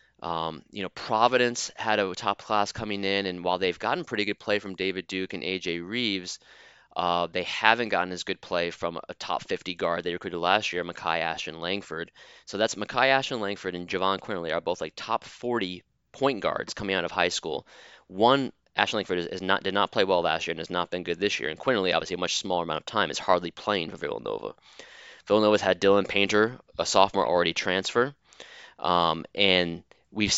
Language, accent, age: English, American, 20-39